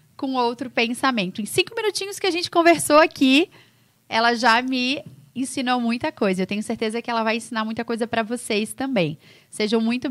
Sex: female